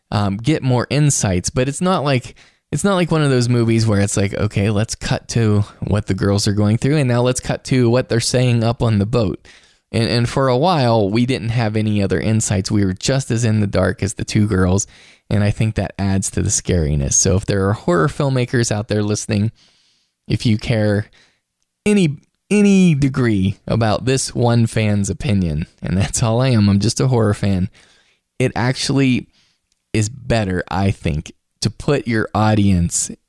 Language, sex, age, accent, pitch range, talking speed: English, male, 20-39, American, 100-125 Hz, 200 wpm